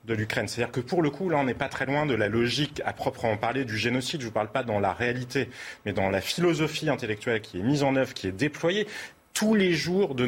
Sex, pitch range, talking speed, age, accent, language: male, 120-150 Hz, 270 wpm, 30-49, French, French